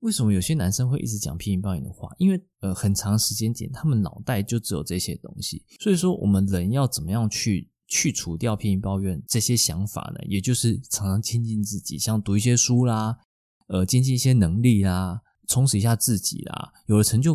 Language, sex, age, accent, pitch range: Chinese, male, 20-39, native, 105-140 Hz